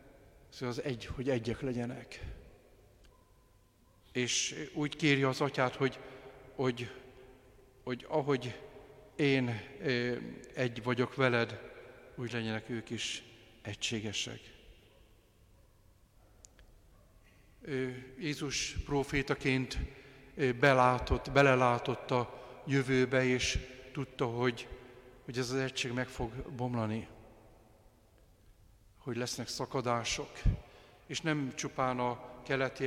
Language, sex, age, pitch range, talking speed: Hungarian, male, 50-69, 120-135 Hz, 90 wpm